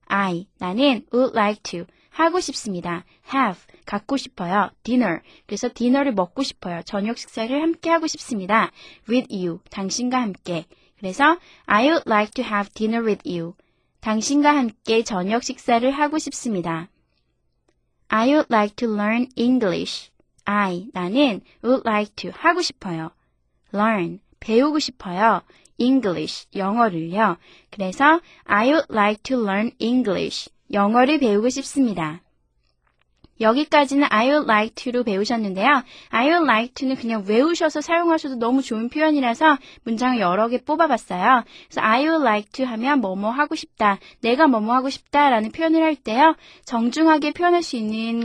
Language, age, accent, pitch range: Korean, 20-39, native, 210-290 Hz